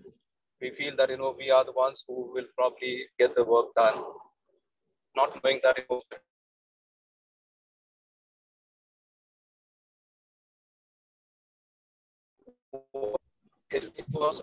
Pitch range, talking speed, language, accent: 130-160 Hz, 85 wpm, English, Indian